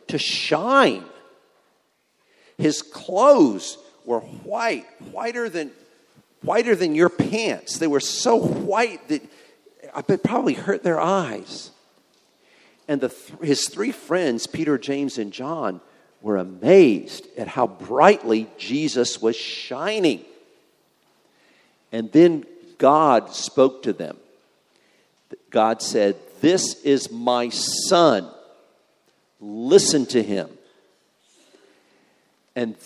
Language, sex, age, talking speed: English, male, 50-69, 100 wpm